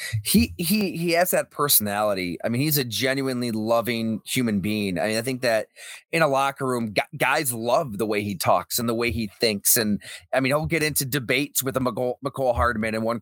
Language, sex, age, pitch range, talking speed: English, male, 30-49, 115-150 Hz, 220 wpm